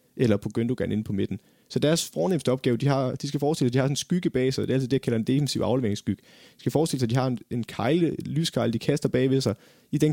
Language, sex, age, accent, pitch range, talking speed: Danish, male, 30-49, native, 115-145 Hz, 285 wpm